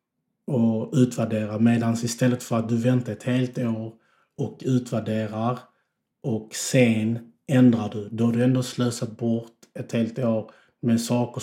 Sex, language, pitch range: male, Swedish, 115-125 Hz